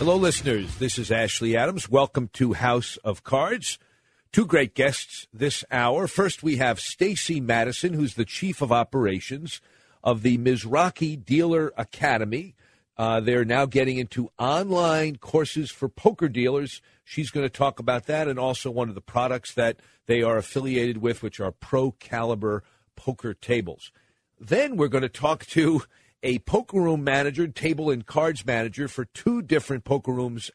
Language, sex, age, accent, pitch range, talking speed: English, male, 50-69, American, 115-145 Hz, 160 wpm